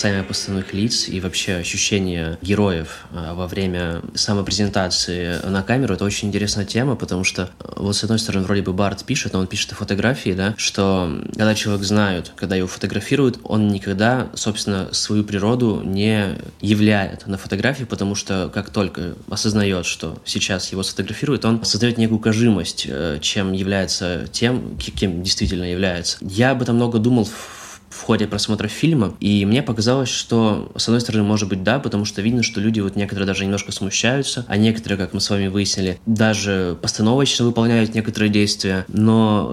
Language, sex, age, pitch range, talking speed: Russian, male, 20-39, 95-110 Hz, 170 wpm